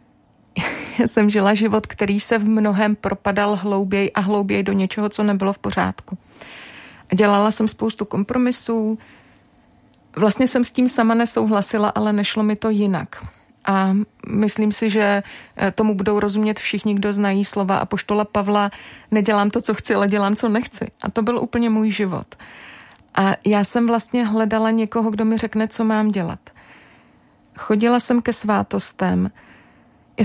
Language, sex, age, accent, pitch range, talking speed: Czech, female, 30-49, native, 195-220 Hz, 155 wpm